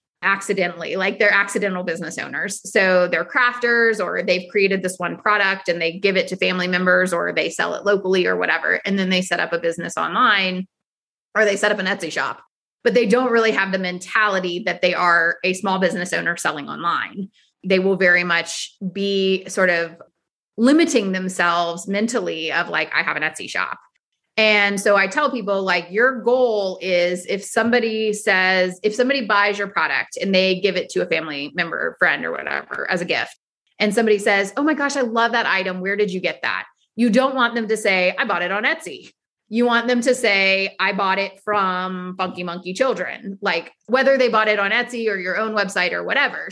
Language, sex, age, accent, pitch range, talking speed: English, female, 30-49, American, 180-225 Hz, 205 wpm